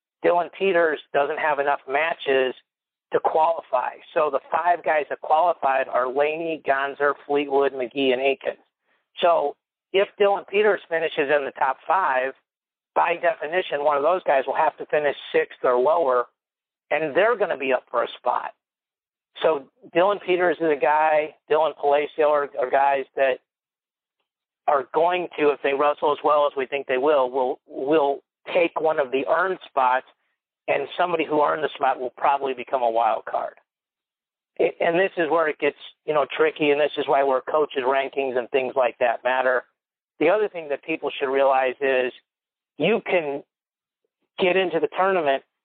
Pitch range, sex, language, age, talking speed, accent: 135-170 Hz, male, English, 50-69, 175 wpm, American